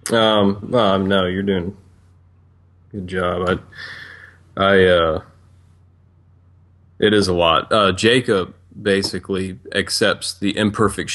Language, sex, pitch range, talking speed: English, male, 90-95 Hz, 115 wpm